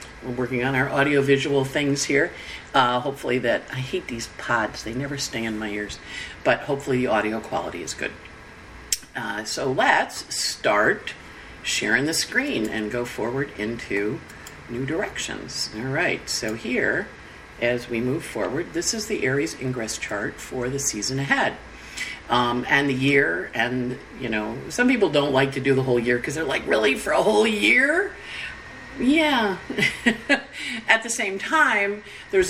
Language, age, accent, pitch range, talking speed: English, 50-69, American, 125-160 Hz, 165 wpm